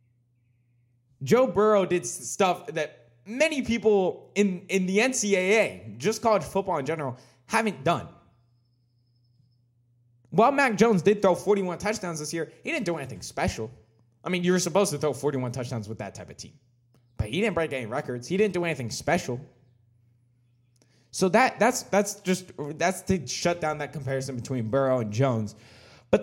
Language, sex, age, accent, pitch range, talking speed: English, male, 20-39, American, 120-190 Hz, 165 wpm